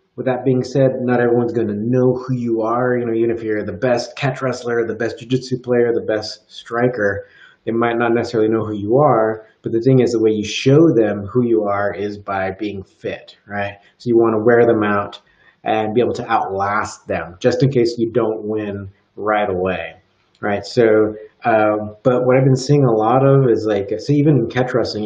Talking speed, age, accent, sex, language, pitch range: 215 wpm, 30-49, American, male, English, 105-125 Hz